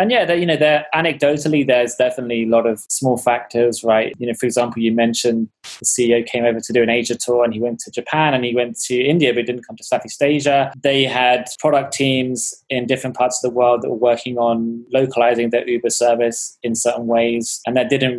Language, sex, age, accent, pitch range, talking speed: English, male, 20-39, British, 115-130 Hz, 230 wpm